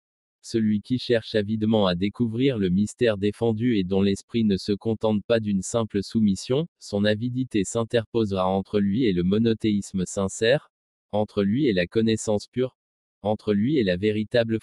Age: 20-39